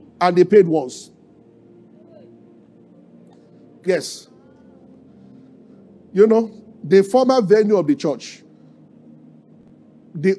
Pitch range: 170-235 Hz